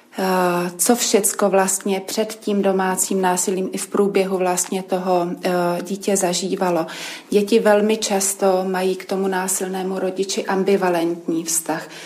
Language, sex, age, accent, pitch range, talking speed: Czech, female, 30-49, native, 185-200 Hz, 120 wpm